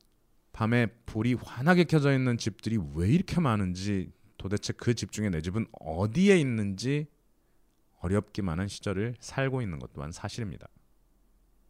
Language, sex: Korean, male